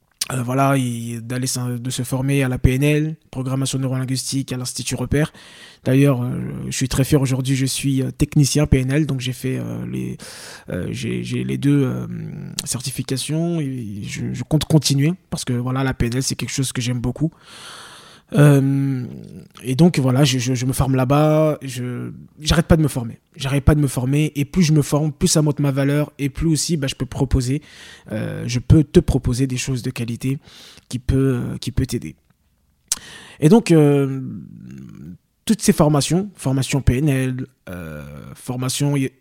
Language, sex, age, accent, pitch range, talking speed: French, male, 20-39, French, 125-145 Hz, 180 wpm